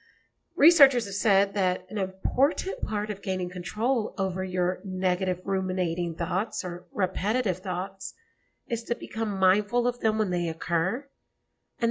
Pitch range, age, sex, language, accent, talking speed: 180-230 Hz, 40-59, female, English, American, 140 wpm